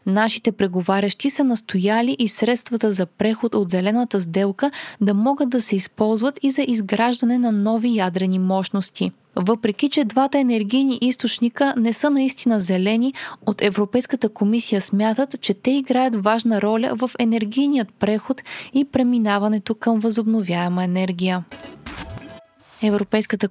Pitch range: 200-245 Hz